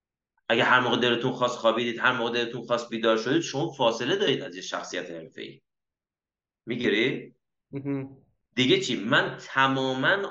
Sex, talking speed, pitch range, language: male, 135 wpm, 125-170 Hz, Persian